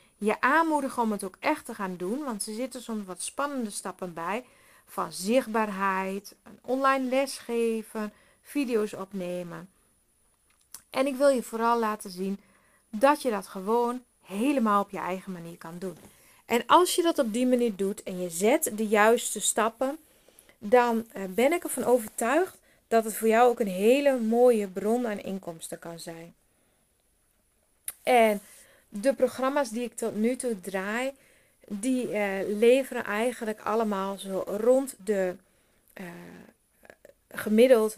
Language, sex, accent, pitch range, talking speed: Dutch, female, Dutch, 195-250 Hz, 145 wpm